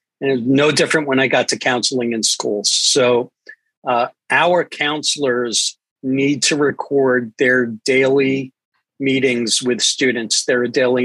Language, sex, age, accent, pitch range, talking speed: English, male, 50-69, American, 125-145 Hz, 140 wpm